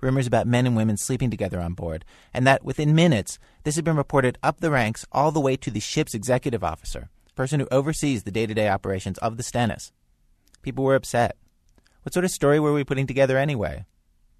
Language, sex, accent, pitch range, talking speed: English, male, American, 105-135 Hz, 210 wpm